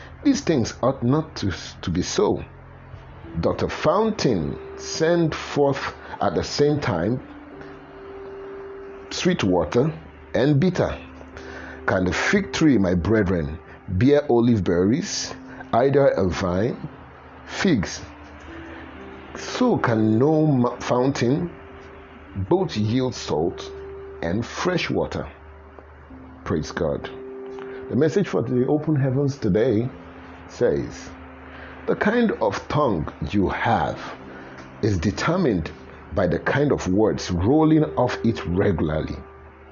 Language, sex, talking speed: English, male, 105 wpm